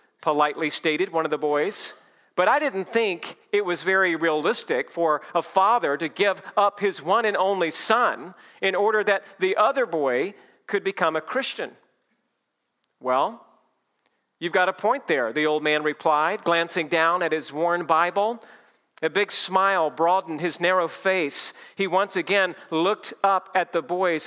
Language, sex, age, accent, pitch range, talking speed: English, male, 40-59, American, 160-200 Hz, 165 wpm